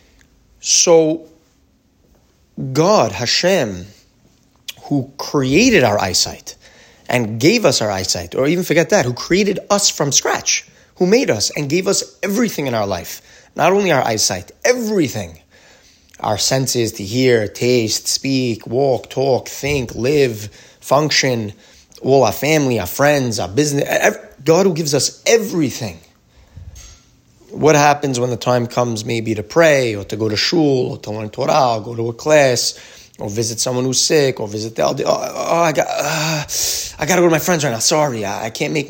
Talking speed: 165 wpm